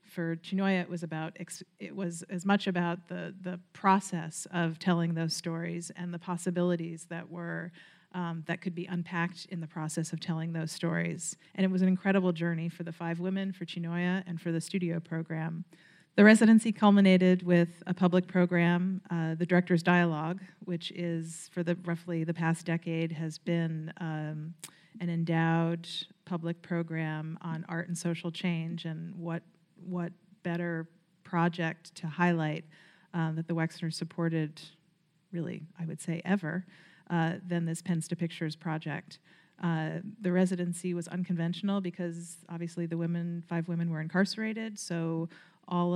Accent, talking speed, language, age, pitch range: American, 160 wpm, English, 40-59, 165-180 Hz